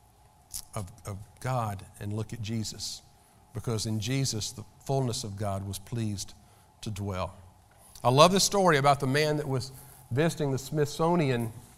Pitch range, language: 115-160 Hz, English